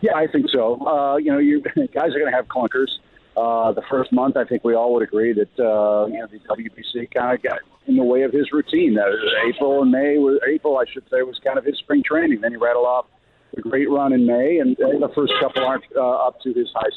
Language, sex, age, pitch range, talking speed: English, male, 50-69, 125-210 Hz, 265 wpm